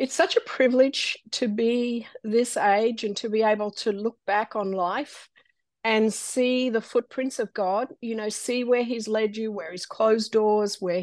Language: English